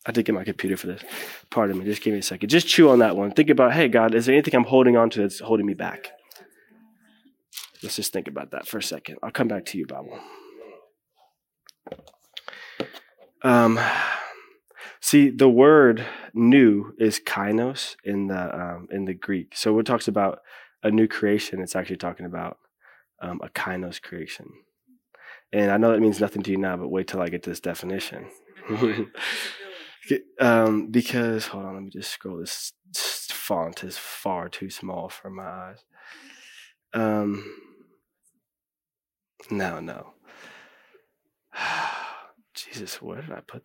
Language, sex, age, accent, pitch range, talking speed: English, male, 20-39, American, 100-130 Hz, 165 wpm